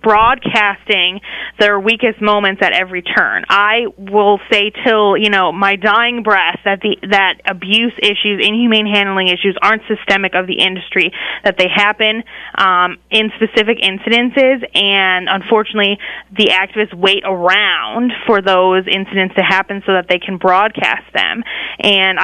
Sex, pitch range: female, 195-225 Hz